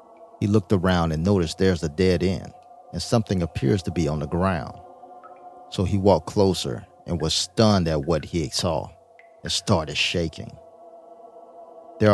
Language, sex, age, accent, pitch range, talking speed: English, male, 40-59, American, 85-115 Hz, 160 wpm